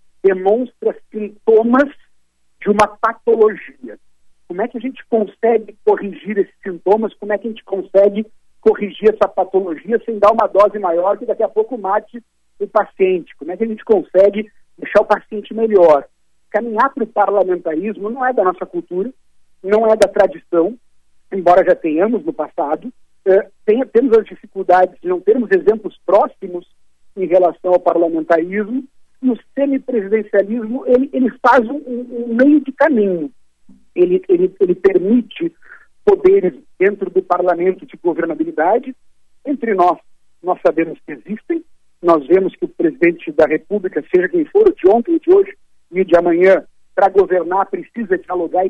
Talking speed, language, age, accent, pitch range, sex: 155 wpm, Portuguese, 50-69, Brazilian, 185-265 Hz, male